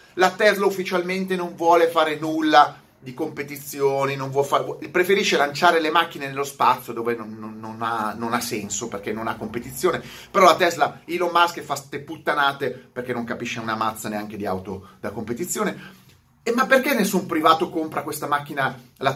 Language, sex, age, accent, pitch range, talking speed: Italian, male, 30-49, native, 125-180 Hz, 170 wpm